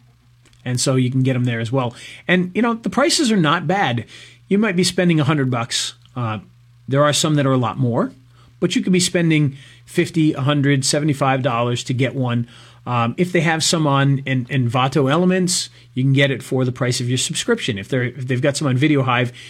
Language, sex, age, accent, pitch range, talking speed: English, male, 40-59, American, 120-150 Hz, 210 wpm